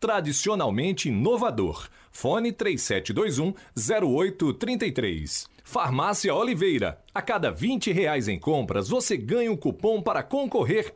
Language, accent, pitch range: Portuguese, Brazilian, 160-235 Hz